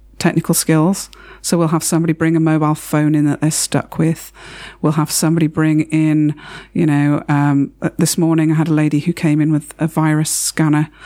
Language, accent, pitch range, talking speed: English, British, 150-165 Hz, 195 wpm